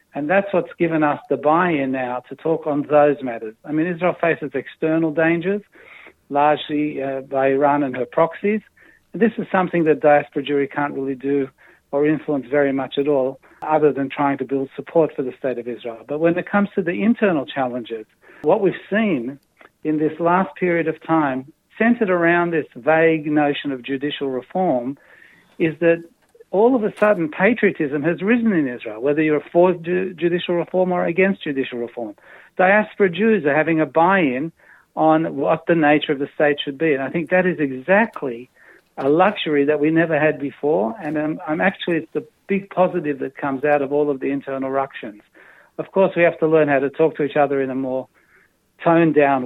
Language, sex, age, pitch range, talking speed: Hebrew, male, 60-79, 140-175 Hz, 190 wpm